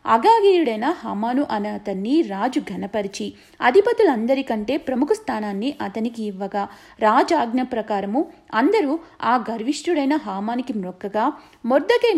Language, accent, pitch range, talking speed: Telugu, native, 210-290 Hz, 95 wpm